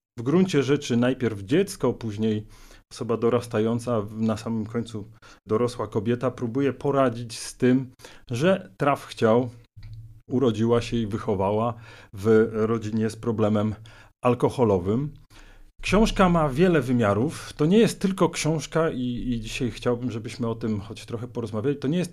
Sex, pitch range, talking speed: male, 115-145 Hz, 140 wpm